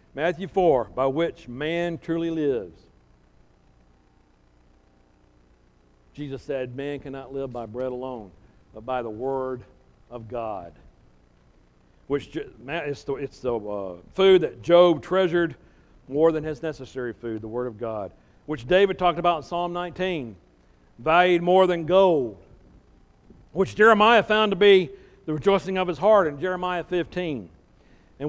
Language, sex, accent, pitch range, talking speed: English, male, American, 110-165 Hz, 130 wpm